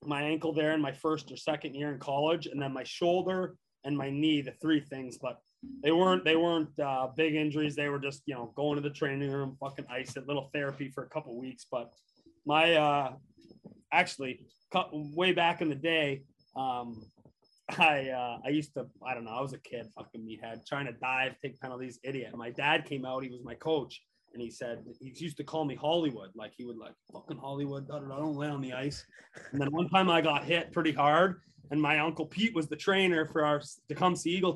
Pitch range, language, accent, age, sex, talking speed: 140-165 Hz, English, American, 20-39, male, 225 wpm